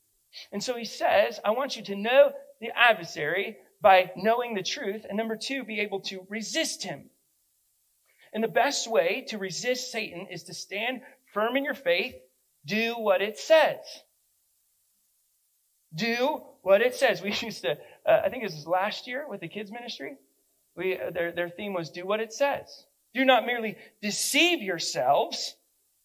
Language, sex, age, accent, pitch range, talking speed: English, male, 40-59, American, 150-225 Hz, 170 wpm